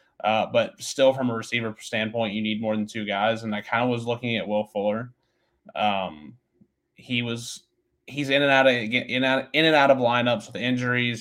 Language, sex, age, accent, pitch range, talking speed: English, male, 20-39, American, 105-120 Hz, 205 wpm